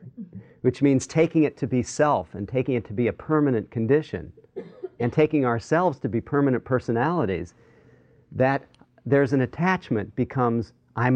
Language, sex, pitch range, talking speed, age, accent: English, male, 110-140 Hz, 150 wpm, 40-59, American